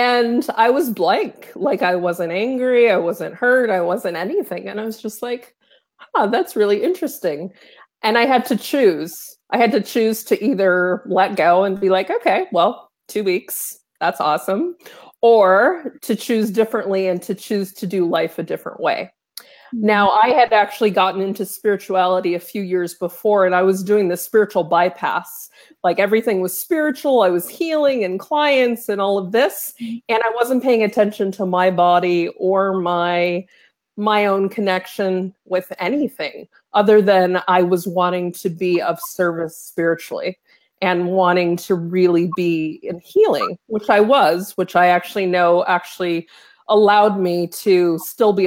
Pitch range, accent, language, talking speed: 180-230 Hz, American, English, 165 wpm